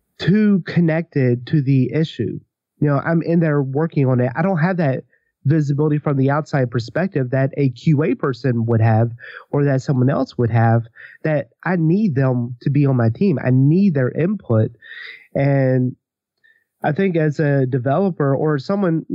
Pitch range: 125-160 Hz